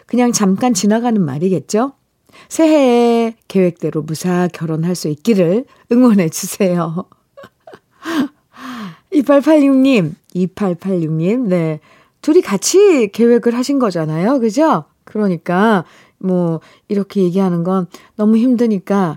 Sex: female